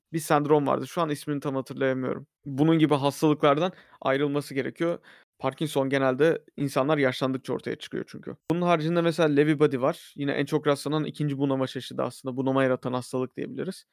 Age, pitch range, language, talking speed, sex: 30-49, 135-150 Hz, Turkish, 165 wpm, male